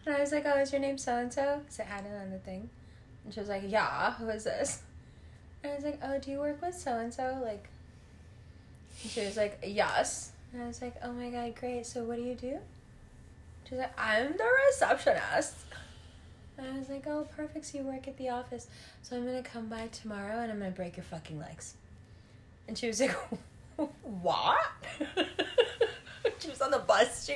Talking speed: 215 wpm